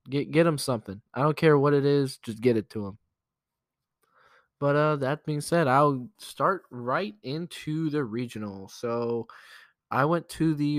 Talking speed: 170 wpm